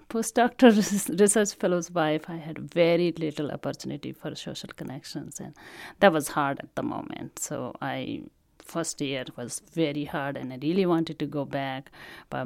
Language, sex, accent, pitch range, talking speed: English, female, Indian, 145-180 Hz, 165 wpm